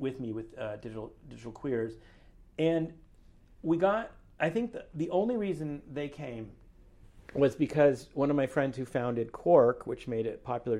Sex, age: male, 50-69